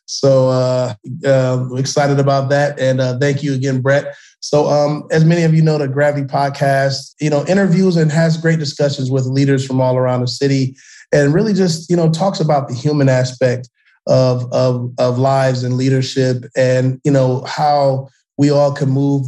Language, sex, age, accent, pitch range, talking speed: English, male, 30-49, American, 130-150 Hz, 185 wpm